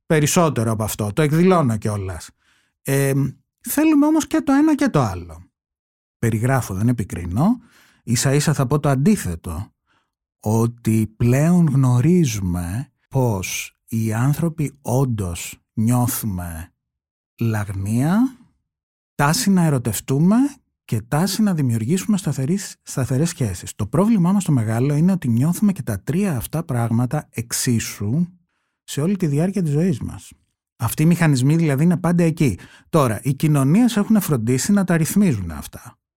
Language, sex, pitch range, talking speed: Greek, male, 115-165 Hz, 130 wpm